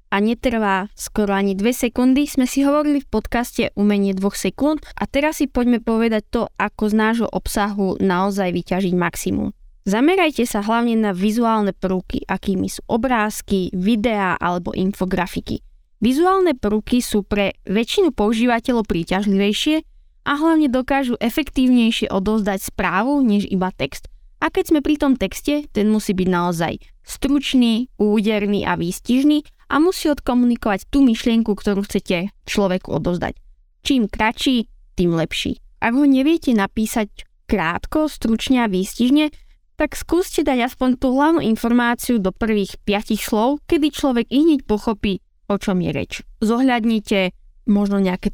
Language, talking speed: Slovak, 140 wpm